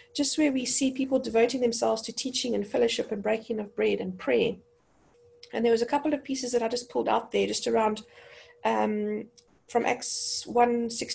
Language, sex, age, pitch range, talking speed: English, female, 40-59, 220-270 Hz, 200 wpm